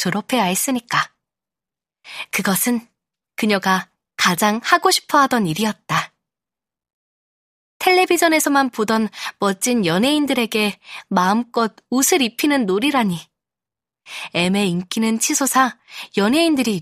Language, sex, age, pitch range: Korean, female, 20-39, 195-275 Hz